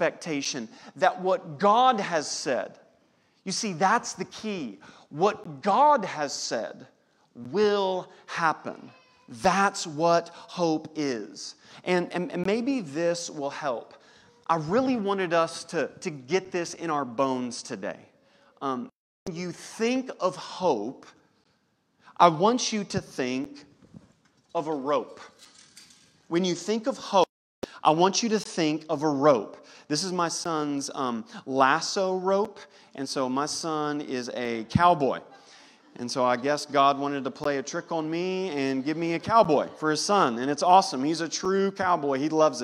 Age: 40-59